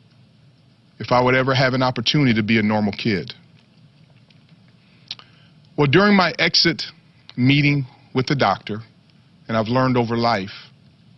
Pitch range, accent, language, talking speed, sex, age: 120-155 Hz, American, English, 135 wpm, male, 40-59